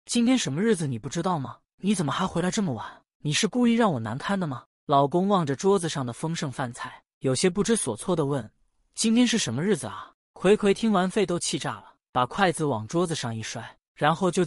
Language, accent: Chinese, native